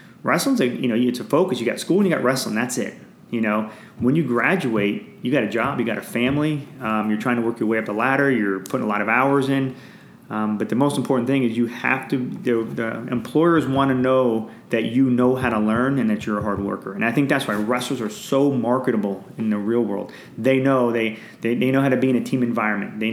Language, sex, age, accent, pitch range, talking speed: English, male, 30-49, American, 110-130 Hz, 260 wpm